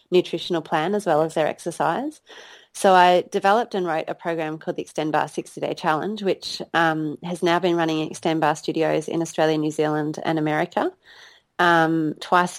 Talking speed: 180 wpm